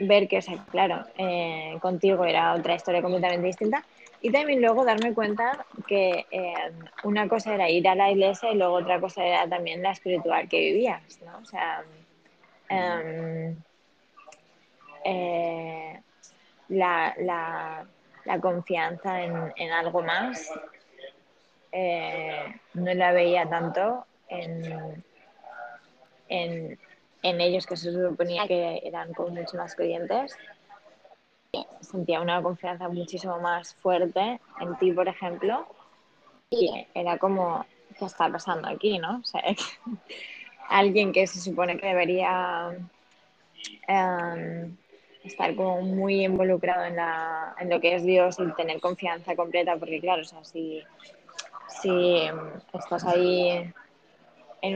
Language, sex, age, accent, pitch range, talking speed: Spanish, female, 20-39, Spanish, 170-190 Hz, 130 wpm